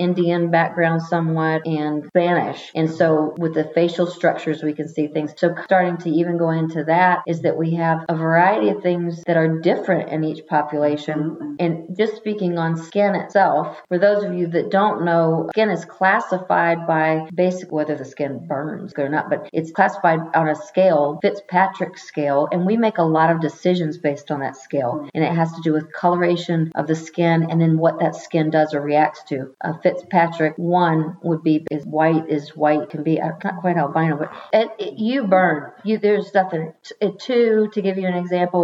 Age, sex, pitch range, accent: 40-59, female, 155-185 Hz, American